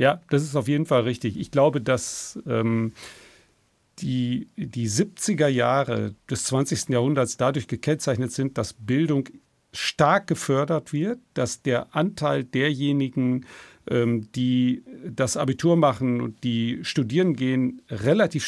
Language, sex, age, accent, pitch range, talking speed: German, male, 50-69, German, 125-155 Hz, 130 wpm